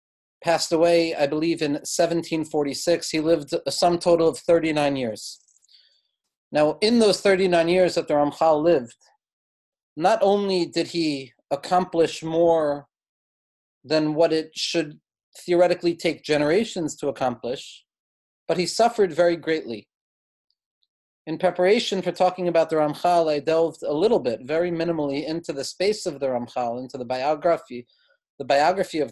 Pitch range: 145-180 Hz